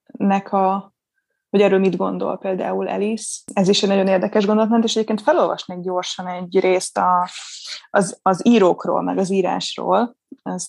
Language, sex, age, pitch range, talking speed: Hungarian, female, 20-39, 185-225 Hz, 140 wpm